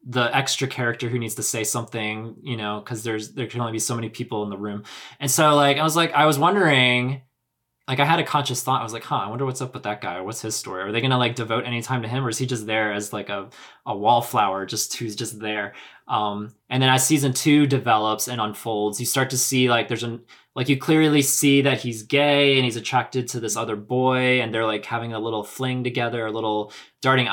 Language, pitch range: English, 105-125 Hz